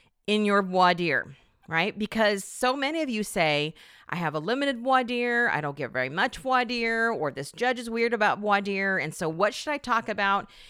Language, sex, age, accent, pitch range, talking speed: English, female, 40-59, American, 175-230 Hz, 195 wpm